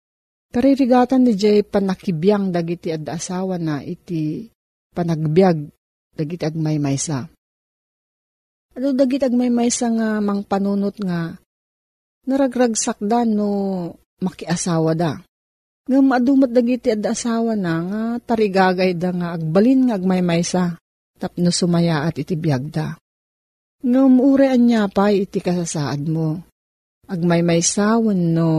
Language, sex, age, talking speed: Filipino, female, 40-59, 115 wpm